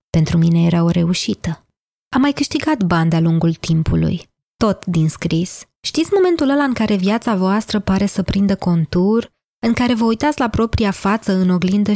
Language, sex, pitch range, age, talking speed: Romanian, female, 170-230 Hz, 20-39, 175 wpm